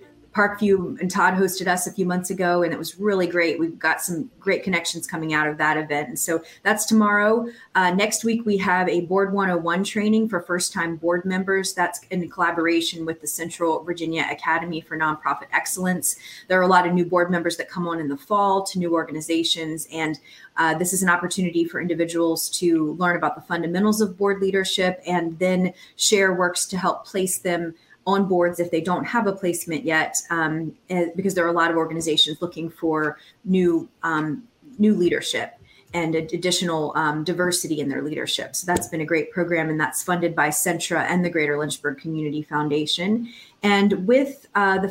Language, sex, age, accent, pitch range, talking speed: English, female, 30-49, American, 165-195 Hz, 190 wpm